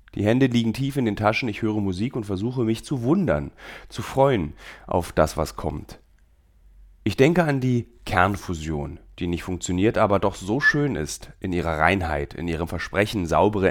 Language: German